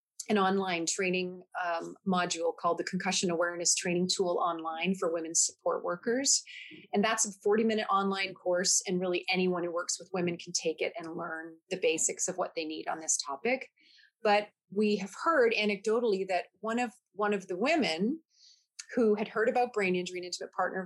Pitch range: 185-250 Hz